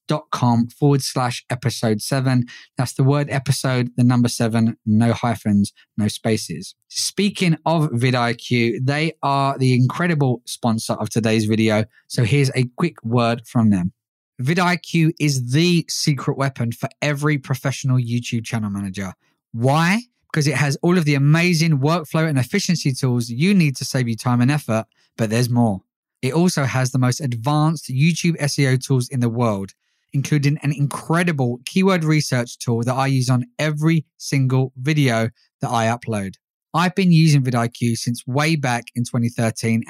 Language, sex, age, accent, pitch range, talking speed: English, male, 20-39, British, 120-155 Hz, 155 wpm